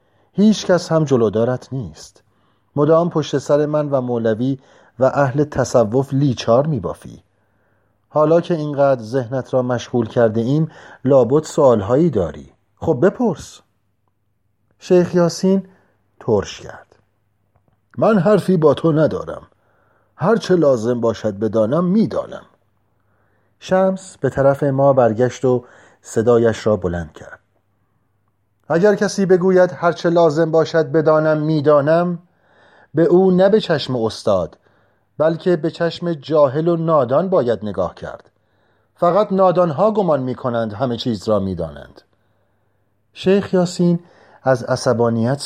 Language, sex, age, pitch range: Persian, male, 40-59, 105-165 Hz